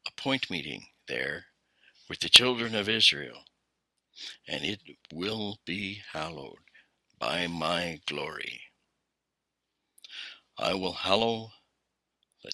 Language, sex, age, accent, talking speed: English, male, 60-79, American, 100 wpm